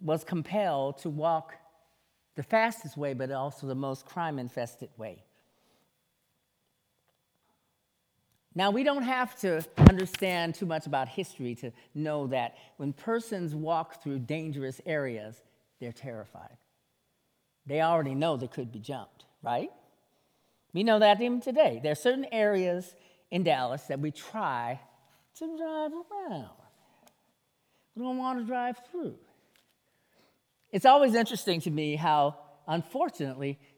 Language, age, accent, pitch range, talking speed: English, 50-69, American, 130-185 Hz, 130 wpm